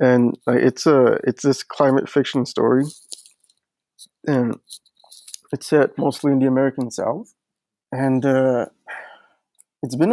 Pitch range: 120-140 Hz